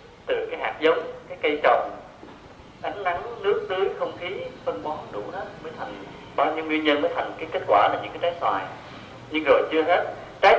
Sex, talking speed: male, 215 wpm